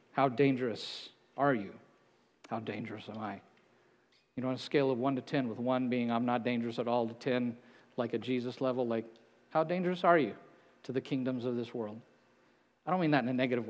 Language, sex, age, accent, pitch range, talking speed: English, male, 50-69, American, 120-150 Hz, 215 wpm